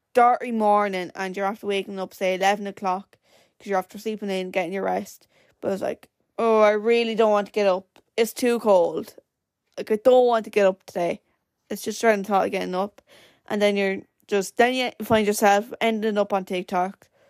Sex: female